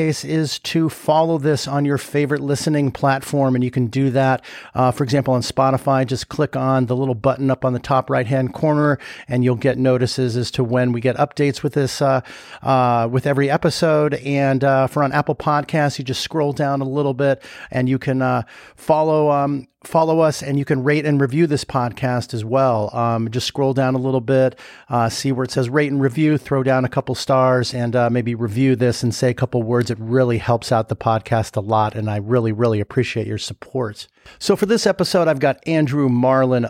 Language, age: English, 40-59